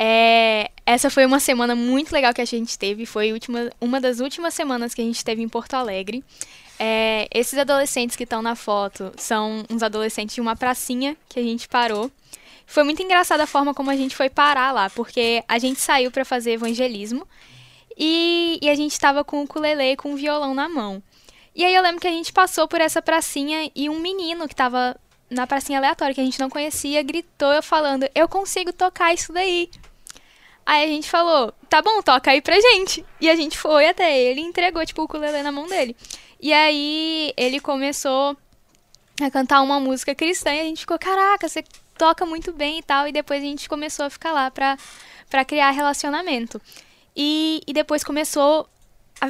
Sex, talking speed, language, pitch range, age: female, 195 wpm, Portuguese, 245-310 Hz, 10-29